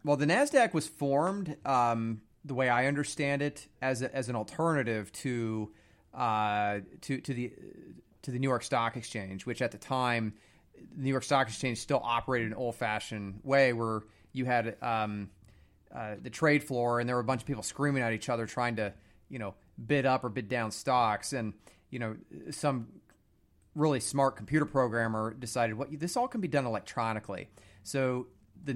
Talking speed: 190 wpm